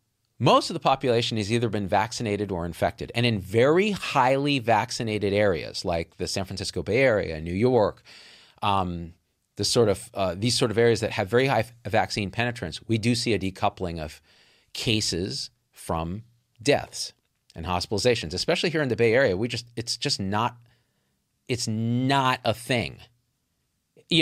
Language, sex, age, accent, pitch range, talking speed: English, male, 40-59, American, 105-135 Hz, 165 wpm